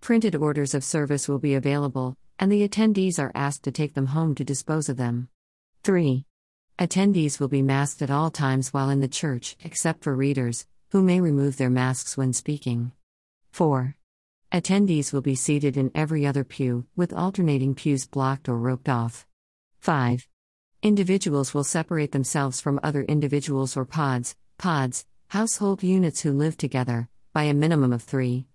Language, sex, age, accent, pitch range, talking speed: English, female, 50-69, American, 130-160 Hz, 165 wpm